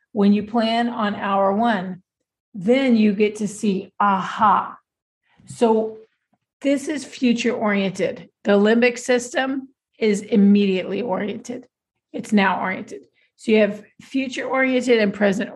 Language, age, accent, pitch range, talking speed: English, 40-59, American, 210-265 Hz, 125 wpm